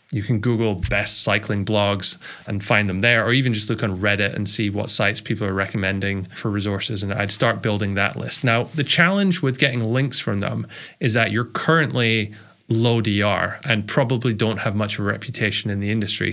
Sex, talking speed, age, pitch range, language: male, 205 wpm, 20-39, 105-125 Hz, English